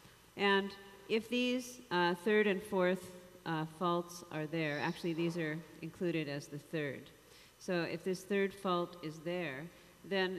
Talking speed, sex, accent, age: 150 wpm, female, American, 50-69